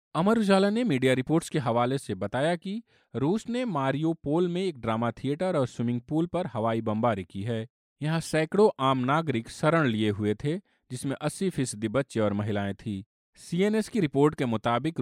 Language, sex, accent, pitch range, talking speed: Hindi, male, native, 115-160 Hz, 185 wpm